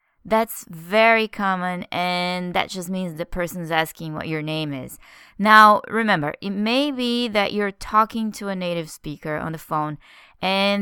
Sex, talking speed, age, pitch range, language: female, 165 wpm, 20-39, 175-230 Hz, English